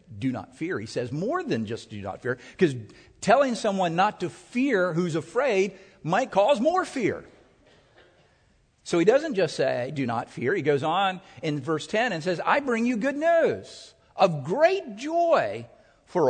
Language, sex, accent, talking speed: English, male, American, 175 wpm